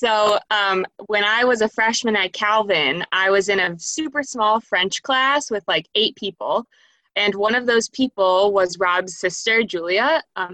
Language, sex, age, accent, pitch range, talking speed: English, female, 20-39, American, 190-260 Hz, 175 wpm